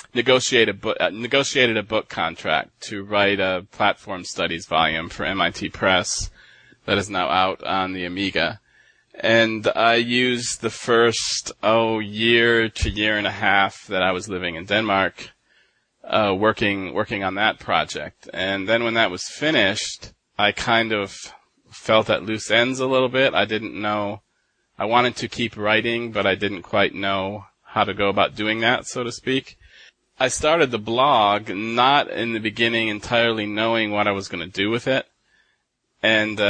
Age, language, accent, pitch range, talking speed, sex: 30-49, English, American, 95-115 Hz, 175 wpm, male